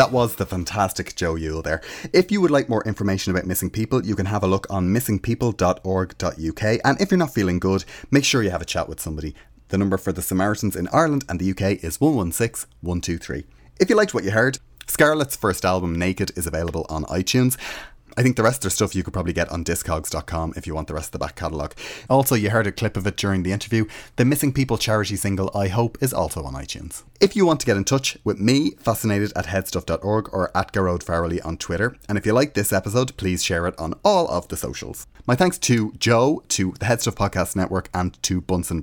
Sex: male